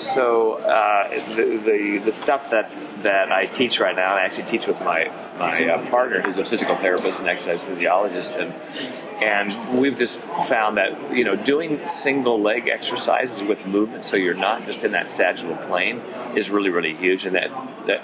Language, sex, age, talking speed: English, male, 40-59, 190 wpm